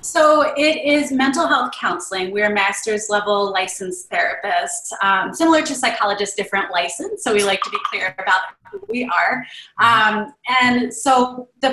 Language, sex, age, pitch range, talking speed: English, female, 20-39, 195-235 Hz, 165 wpm